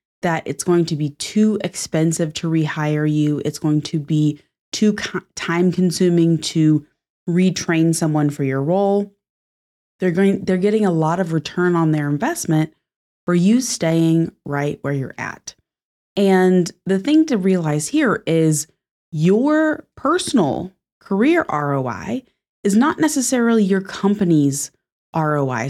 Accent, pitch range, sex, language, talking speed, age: American, 150-195 Hz, female, English, 140 wpm, 20-39